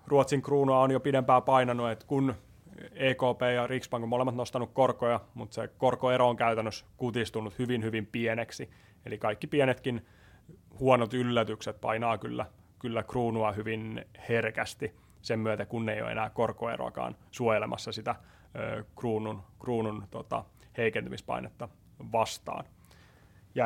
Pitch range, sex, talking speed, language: 110-125 Hz, male, 125 wpm, Finnish